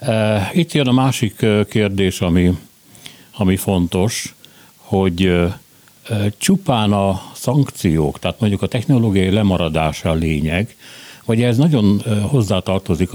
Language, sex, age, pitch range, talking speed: Hungarian, male, 60-79, 90-115 Hz, 105 wpm